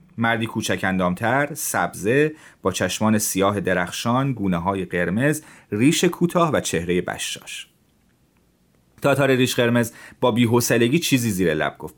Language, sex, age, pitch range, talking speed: Persian, male, 30-49, 100-145 Hz, 120 wpm